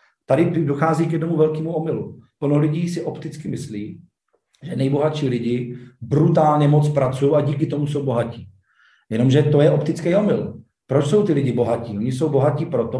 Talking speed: 165 wpm